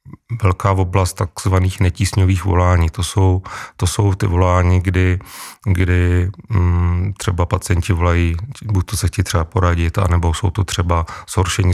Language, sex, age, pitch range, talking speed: Czech, male, 40-59, 85-100 Hz, 140 wpm